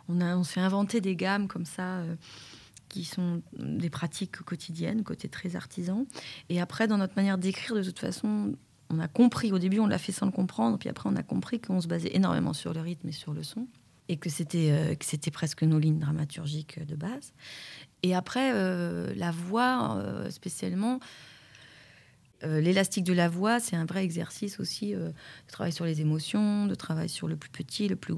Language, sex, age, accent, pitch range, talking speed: French, female, 30-49, French, 155-190 Hz, 205 wpm